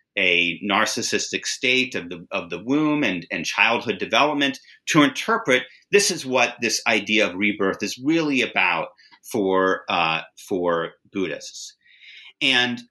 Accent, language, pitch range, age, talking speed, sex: American, English, 100-135 Hz, 30-49, 135 wpm, male